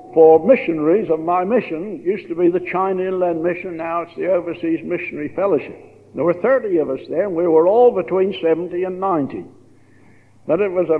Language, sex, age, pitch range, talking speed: English, male, 60-79, 160-225 Hz, 200 wpm